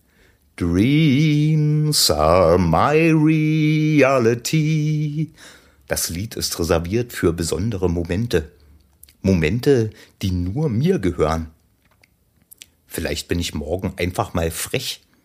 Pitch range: 90-145 Hz